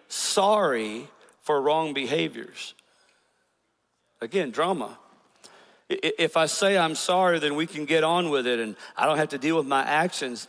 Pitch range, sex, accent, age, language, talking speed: 150-205 Hz, male, American, 50-69, English, 155 wpm